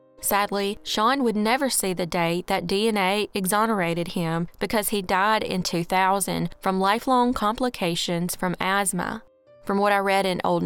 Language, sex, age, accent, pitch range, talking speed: English, female, 20-39, American, 180-240 Hz, 150 wpm